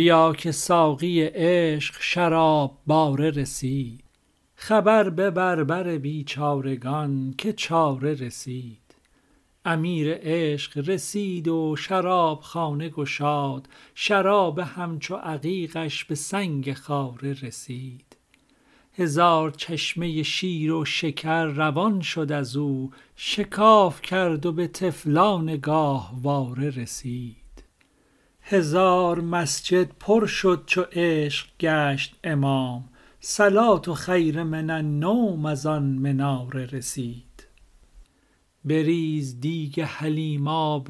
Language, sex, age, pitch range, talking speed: Persian, male, 50-69, 140-175 Hz, 95 wpm